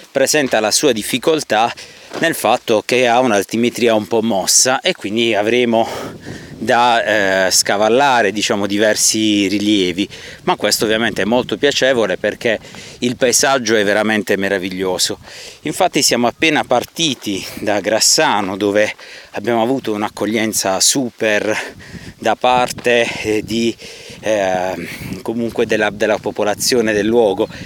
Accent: native